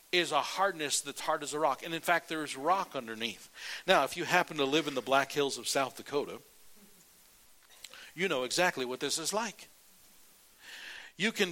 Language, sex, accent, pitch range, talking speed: English, male, American, 145-215 Hz, 190 wpm